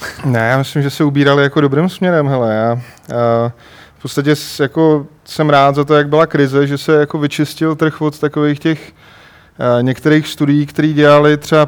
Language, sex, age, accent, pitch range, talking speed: Czech, male, 20-39, native, 130-145 Hz, 175 wpm